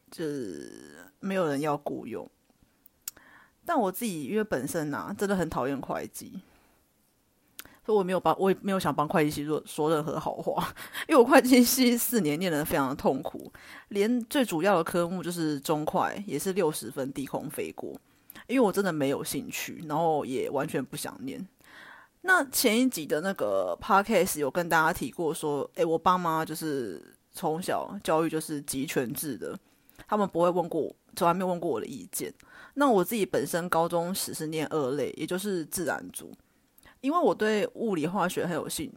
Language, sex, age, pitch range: Chinese, female, 30-49, 160-225 Hz